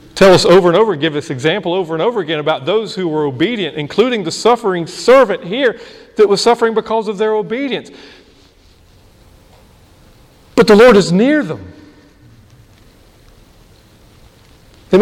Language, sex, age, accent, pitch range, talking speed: English, male, 40-59, American, 155-220 Hz, 145 wpm